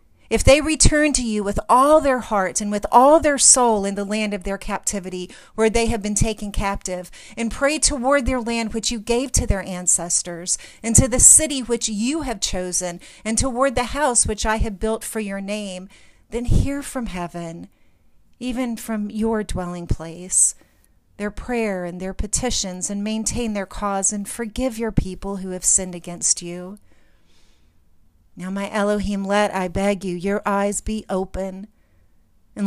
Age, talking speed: 40-59, 175 wpm